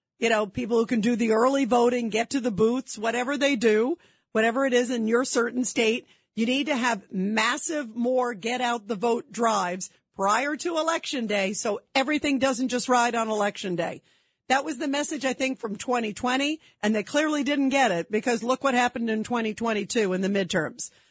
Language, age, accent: English, 50-69, American